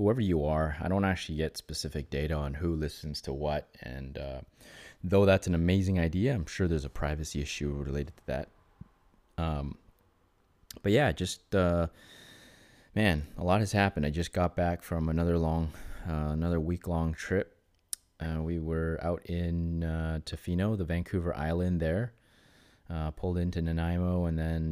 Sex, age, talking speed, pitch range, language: male, 20-39, 170 wpm, 75-90 Hz, English